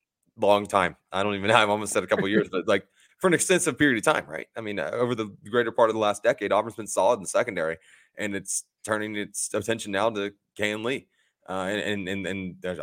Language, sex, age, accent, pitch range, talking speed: English, male, 20-39, American, 90-105 Hz, 255 wpm